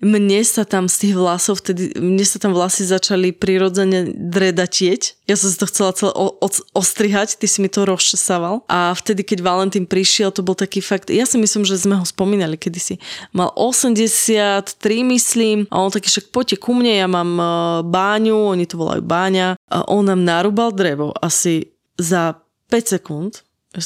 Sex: female